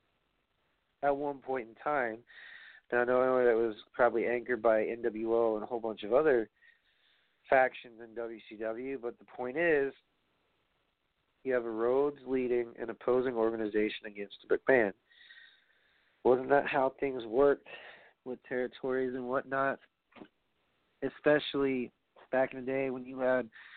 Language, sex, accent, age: English, male, American, 40-59